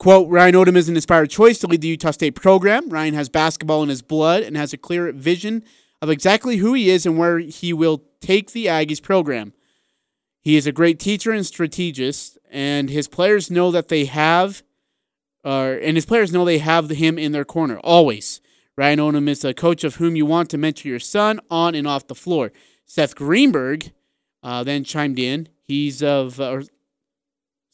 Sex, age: male, 30-49